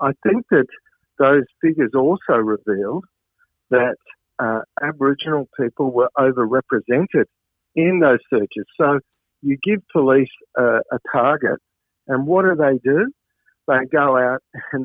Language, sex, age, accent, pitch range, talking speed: English, male, 50-69, Australian, 125-170 Hz, 130 wpm